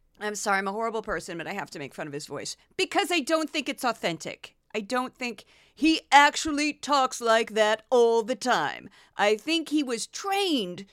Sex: female